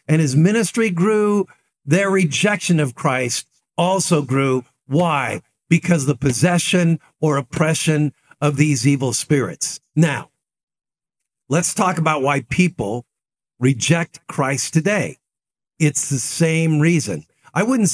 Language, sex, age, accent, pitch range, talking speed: English, male, 50-69, American, 150-190 Hz, 115 wpm